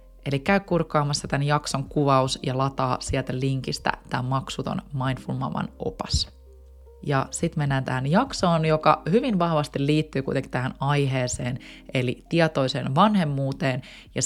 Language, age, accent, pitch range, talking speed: Finnish, 20-39, native, 135-165 Hz, 125 wpm